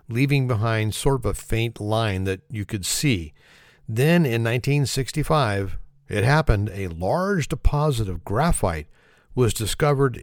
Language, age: English, 50-69